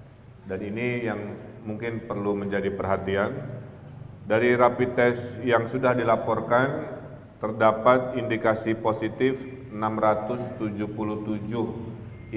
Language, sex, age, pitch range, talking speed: Indonesian, male, 40-59, 105-125 Hz, 80 wpm